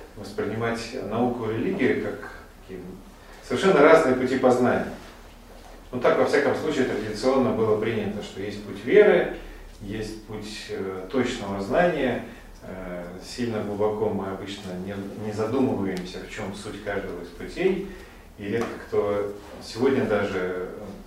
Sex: male